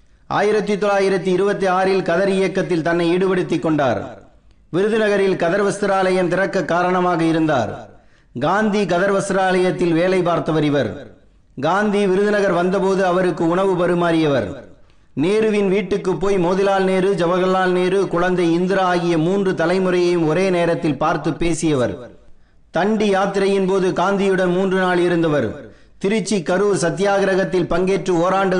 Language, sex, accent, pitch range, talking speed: Tamil, male, native, 165-190 Hz, 115 wpm